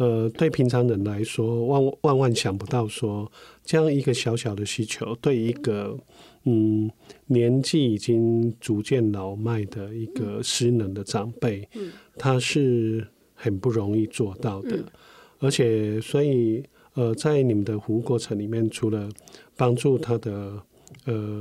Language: Chinese